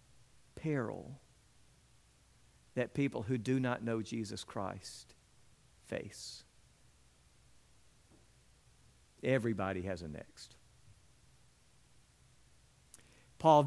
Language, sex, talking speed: English, male, 65 wpm